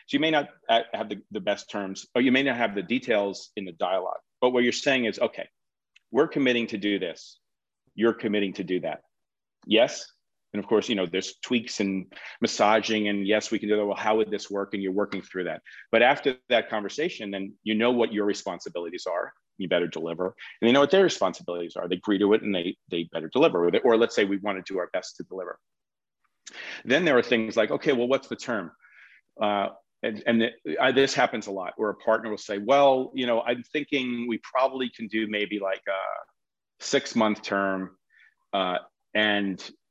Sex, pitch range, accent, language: male, 100-120 Hz, American, English